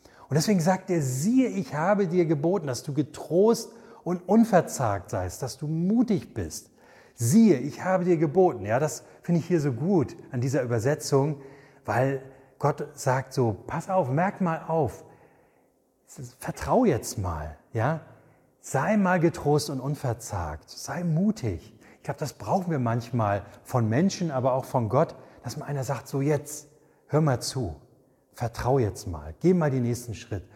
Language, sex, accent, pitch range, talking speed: German, male, German, 115-155 Hz, 165 wpm